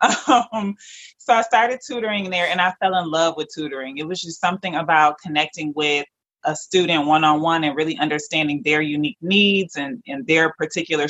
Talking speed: 180 wpm